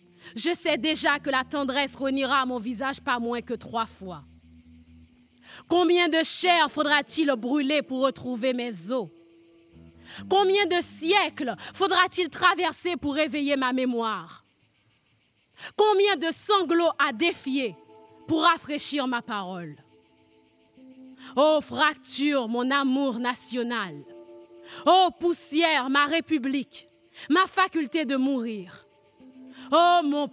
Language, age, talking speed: French, 30-49, 110 wpm